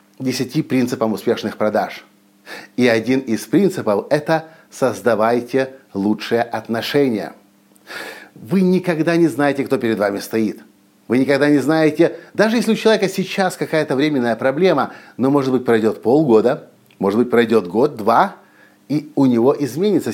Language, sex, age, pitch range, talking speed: Russian, male, 50-69, 125-170 Hz, 135 wpm